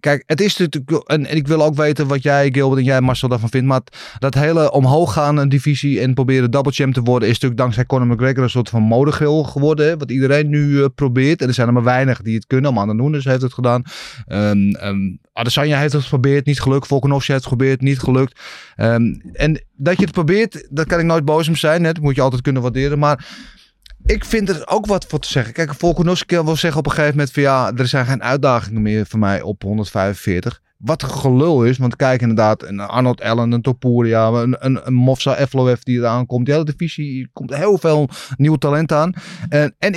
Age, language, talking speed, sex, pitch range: 30-49, Dutch, 230 wpm, male, 125-155 Hz